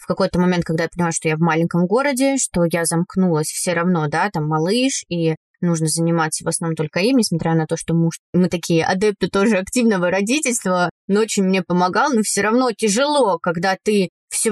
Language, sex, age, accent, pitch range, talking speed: Russian, female, 20-39, native, 175-230 Hz, 200 wpm